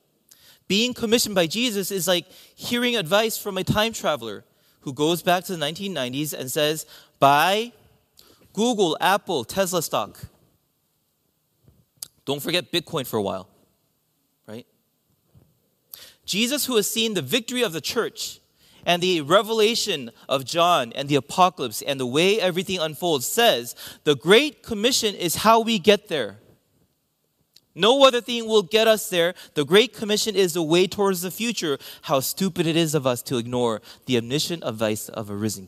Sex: male